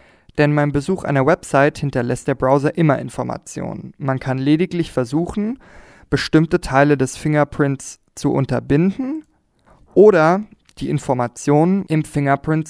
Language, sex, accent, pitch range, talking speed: German, male, German, 130-160 Hz, 120 wpm